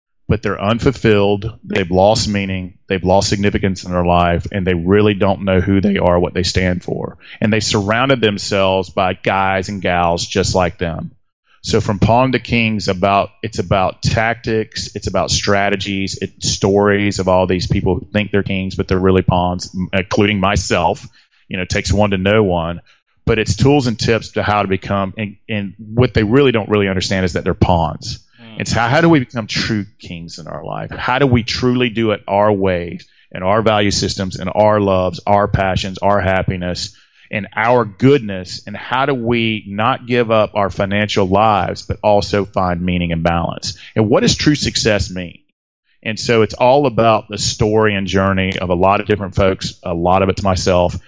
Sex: male